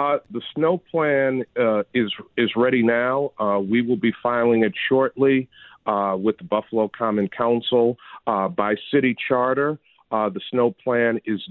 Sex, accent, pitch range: male, American, 110-130 Hz